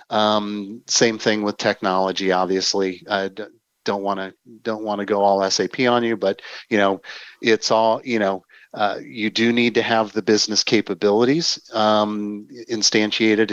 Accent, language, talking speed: American, English, 165 wpm